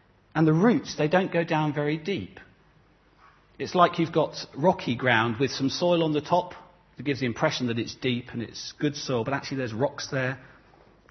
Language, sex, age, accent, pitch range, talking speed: English, male, 40-59, British, 110-155 Hz, 205 wpm